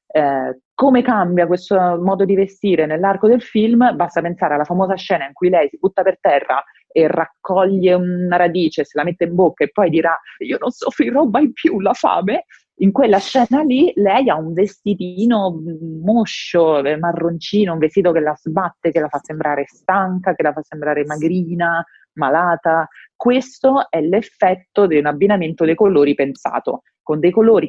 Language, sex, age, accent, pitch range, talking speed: Italian, female, 30-49, native, 160-195 Hz, 170 wpm